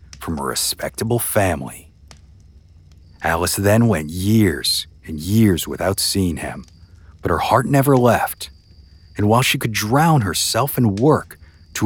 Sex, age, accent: male, 50-69, American